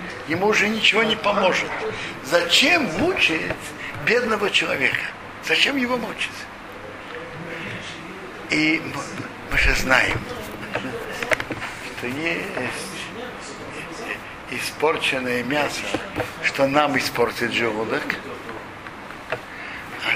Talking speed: 75 wpm